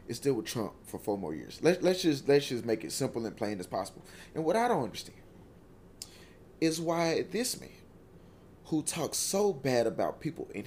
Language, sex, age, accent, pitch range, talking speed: English, male, 20-39, American, 130-205 Hz, 200 wpm